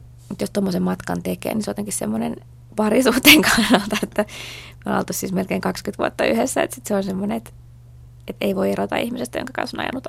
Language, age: Finnish, 20-39